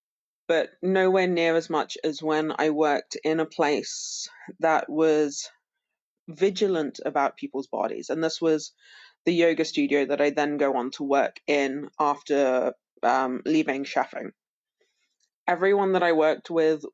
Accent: British